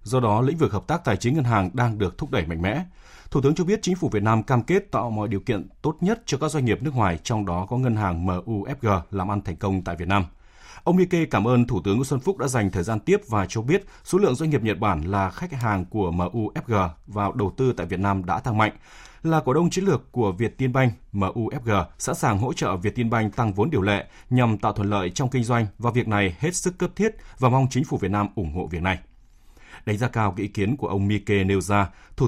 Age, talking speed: 20-39, 270 wpm